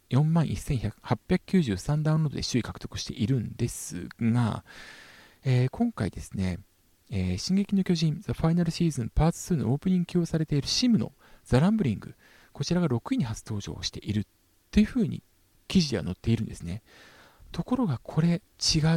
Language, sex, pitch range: Japanese, male, 100-170 Hz